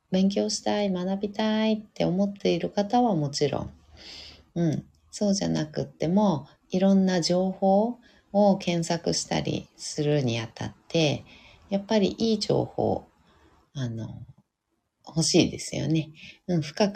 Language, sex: Japanese, female